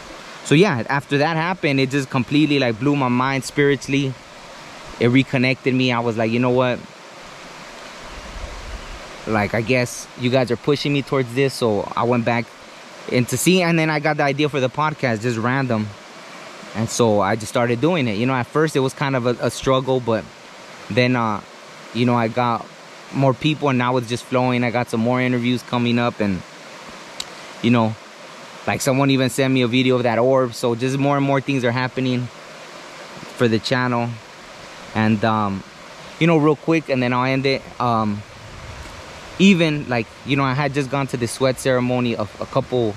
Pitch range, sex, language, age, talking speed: 120-140 Hz, male, English, 20-39, 195 wpm